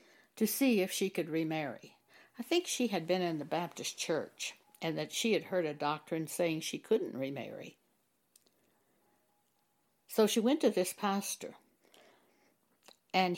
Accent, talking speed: American, 150 wpm